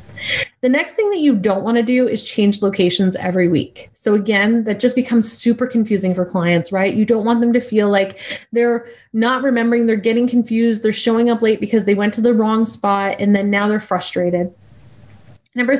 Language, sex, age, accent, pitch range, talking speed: English, female, 30-49, American, 195-250 Hz, 205 wpm